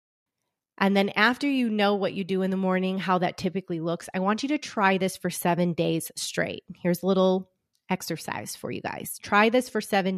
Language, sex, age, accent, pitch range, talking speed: English, female, 30-49, American, 175-210 Hz, 210 wpm